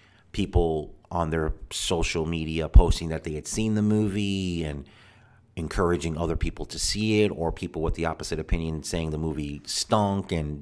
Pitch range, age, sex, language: 80-100 Hz, 40-59, male, English